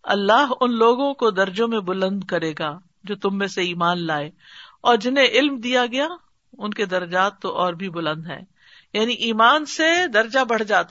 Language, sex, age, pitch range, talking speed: Urdu, female, 50-69, 185-250 Hz, 185 wpm